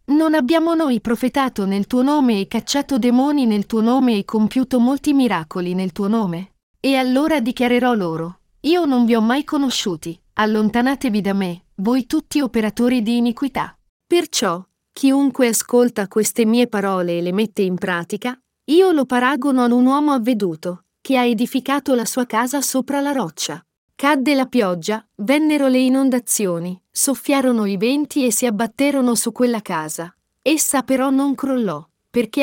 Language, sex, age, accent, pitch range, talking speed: Italian, female, 40-59, native, 205-270 Hz, 155 wpm